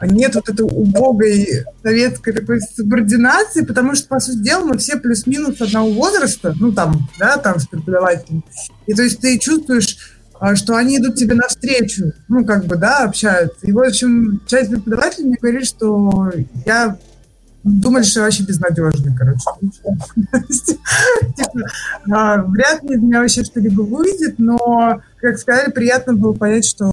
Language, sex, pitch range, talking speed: English, male, 195-240 Hz, 145 wpm